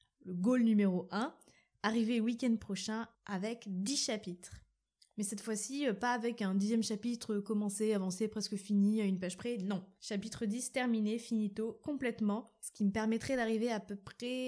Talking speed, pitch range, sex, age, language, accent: 165 wpm, 200-240 Hz, female, 20-39, French, French